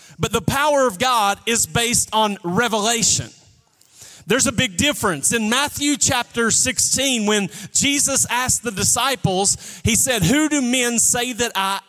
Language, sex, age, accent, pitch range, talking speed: English, male, 30-49, American, 205-255 Hz, 150 wpm